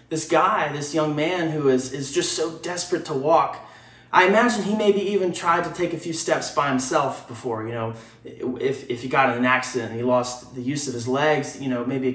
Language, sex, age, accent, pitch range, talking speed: English, male, 20-39, American, 150-200 Hz, 235 wpm